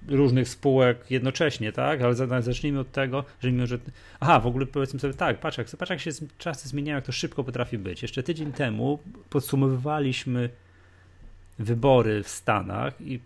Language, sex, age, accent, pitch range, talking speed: Polish, male, 30-49, native, 100-130 Hz, 160 wpm